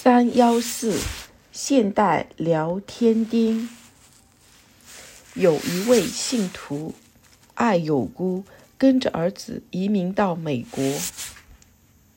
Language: Chinese